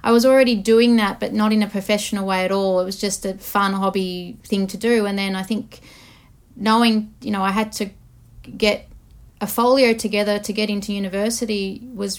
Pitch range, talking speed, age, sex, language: 195-220 Hz, 200 wpm, 30-49, female, English